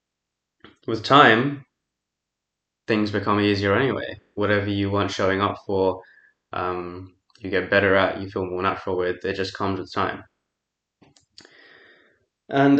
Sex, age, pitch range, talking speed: male, 20-39, 95-115 Hz, 130 wpm